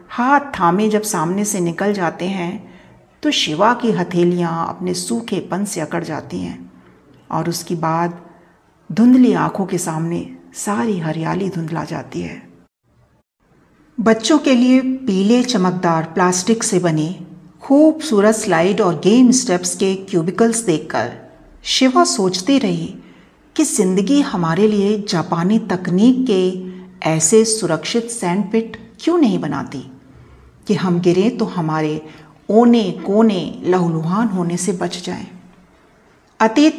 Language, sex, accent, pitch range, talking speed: Hindi, female, native, 170-220 Hz, 125 wpm